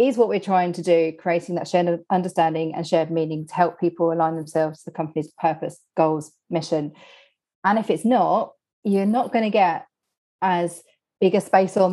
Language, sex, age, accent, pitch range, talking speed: English, female, 40-59, British, 170-210 Hz, 190 wpm